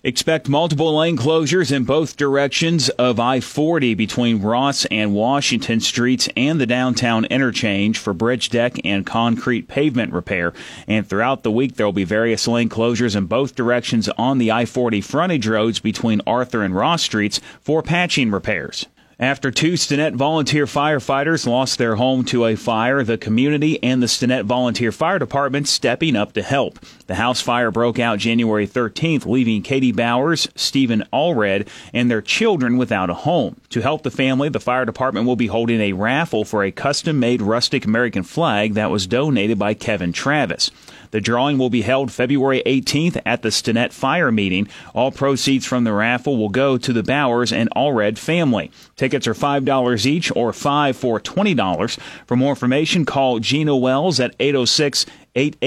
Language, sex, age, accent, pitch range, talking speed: English, male, 30-49, American, 115-140 Hz, 170 wpm